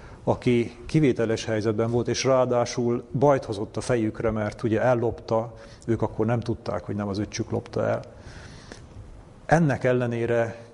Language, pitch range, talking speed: Hungarian, 110-135 Hz, 140 wpm